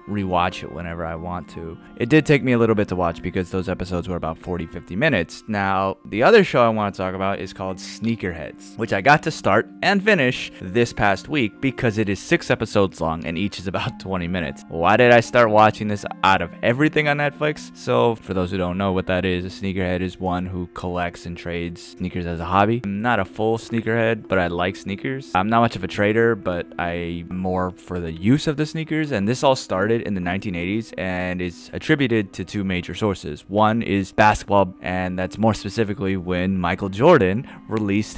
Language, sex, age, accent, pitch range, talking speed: English, male, 20-39, American, 90-115 Hz, 215 wpm